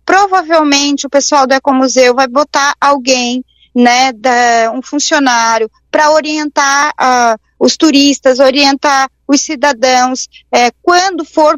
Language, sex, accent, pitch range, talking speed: Portuguese, female, Brazilian, 255-315 Hz, 120 wpm